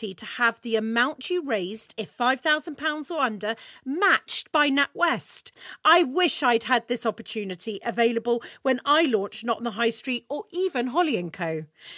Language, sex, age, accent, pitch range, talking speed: English, female, 40-59, British, 210-295 Hz, 165 wpm